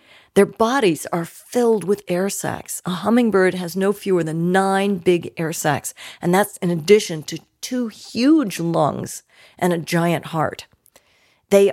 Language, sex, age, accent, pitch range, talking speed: English, female, 50-69, American, 170-205 Hz, 155 wpm